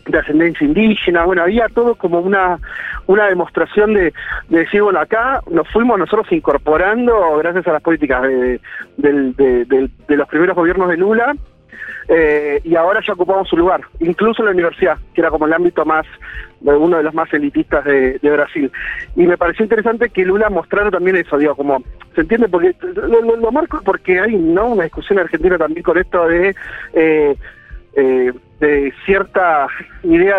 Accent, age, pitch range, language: Argentinian, 40-59, 155-220 Hz, Spanish